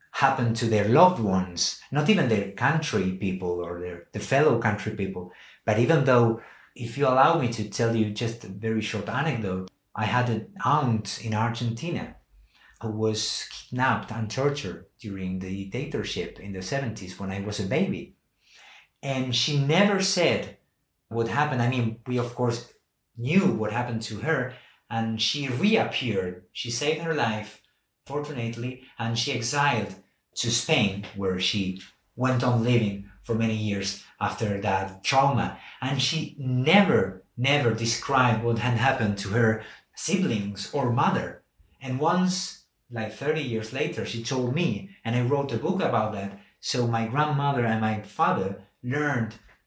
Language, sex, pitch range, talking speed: English, male, 105-140 Hz, 155 wpm